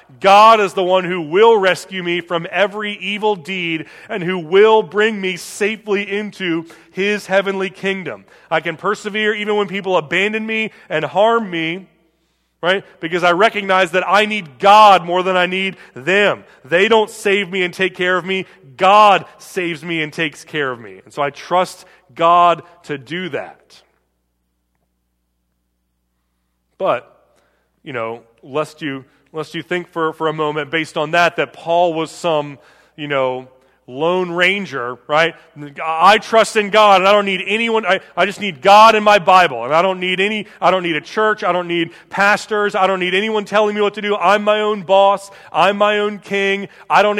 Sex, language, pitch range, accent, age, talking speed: male, English, 165-210 Hz, American, 30-49, 185 wpm